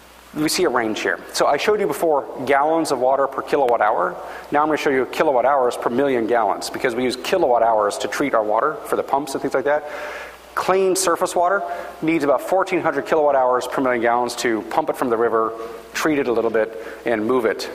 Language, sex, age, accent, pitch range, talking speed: English, male, 40-59, American, 125-185 Hz, 230 wpm